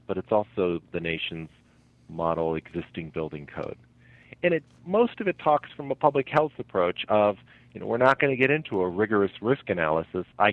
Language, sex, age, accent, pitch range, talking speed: English, male, 40-59, American, 90-120 Hz, 195 wpm